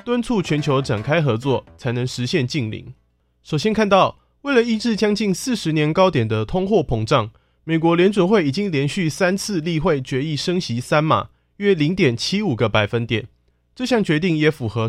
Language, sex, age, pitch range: Chinese, male, 20-39, 125-190 Hz